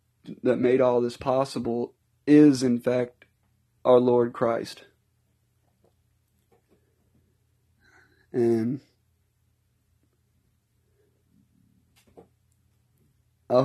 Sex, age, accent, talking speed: male, 30-49, American, 55 wpm